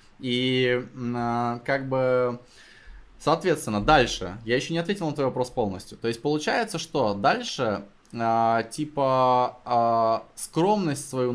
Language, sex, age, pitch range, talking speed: Russian, male, 20-39, 125-160 Hz, 110 wpm